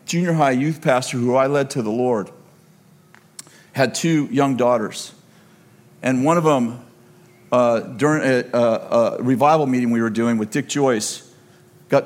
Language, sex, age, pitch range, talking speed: English, male, 50-69, 120-165 Hz, 155 wpm